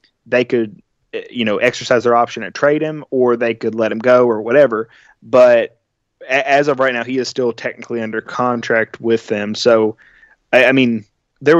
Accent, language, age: American, English, 20-39